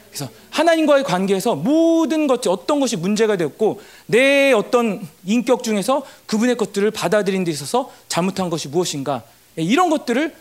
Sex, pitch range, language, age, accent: male, 195-280 Hz, Korean, 40-59, native